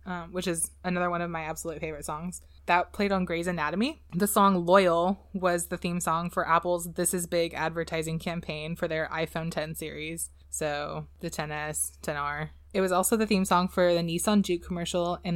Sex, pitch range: female, 155-185 Hz